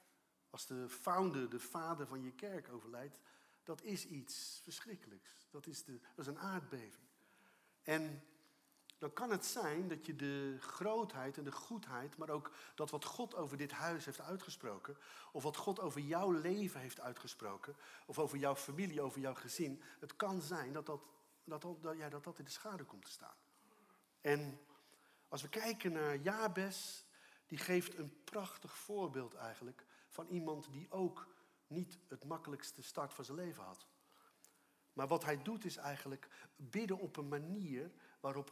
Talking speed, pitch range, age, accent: 165 wpm, 140-175 Hz, 50-69, Dutch